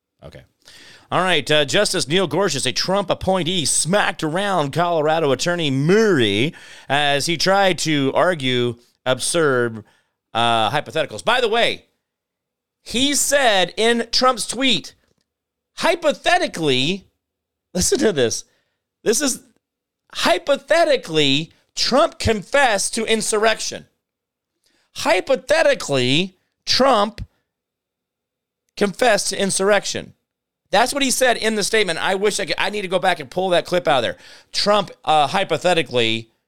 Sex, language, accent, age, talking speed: male, English, American, 40-59, 120 wpm